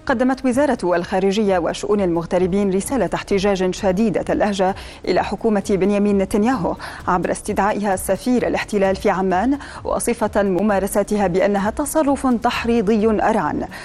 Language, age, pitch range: Arabic, 30-49, 185-220 Hz